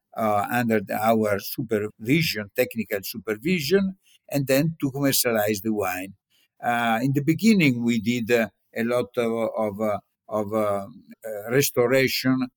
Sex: male